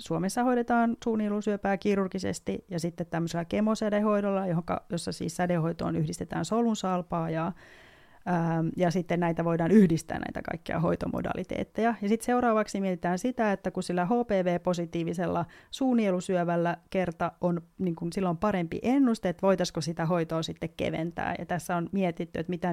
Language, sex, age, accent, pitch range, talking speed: Finnish, female, 30-49, native, 170-205 Hz, 135 wpm